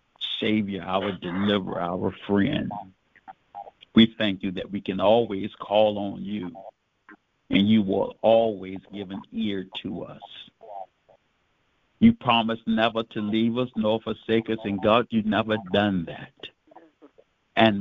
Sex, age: male, 60-79